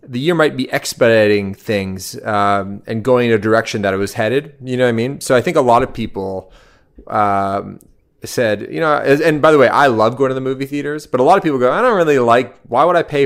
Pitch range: 105-130 Hz